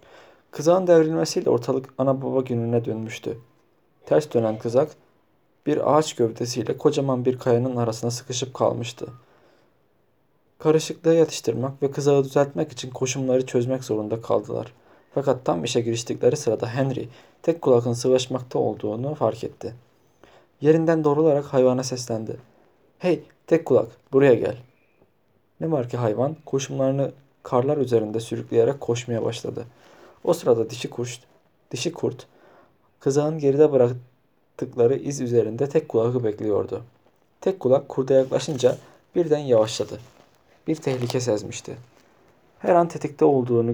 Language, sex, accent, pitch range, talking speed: Turkish, male, native, 120-145 Hz, 120 wpm